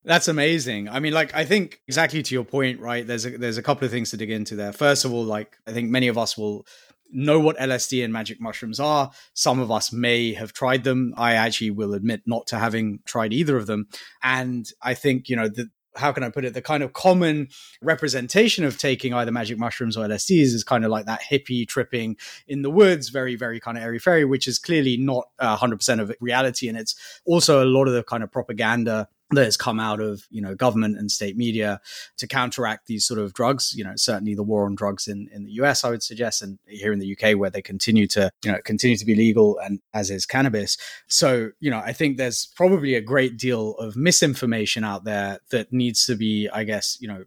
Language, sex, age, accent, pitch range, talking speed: English, male, 20-39, British, 110-135 Hz, 235 wpm